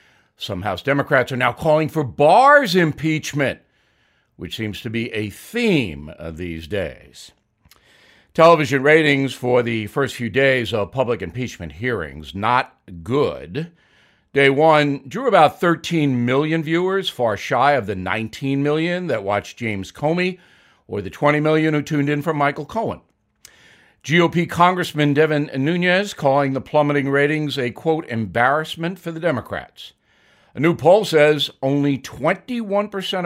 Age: 60-79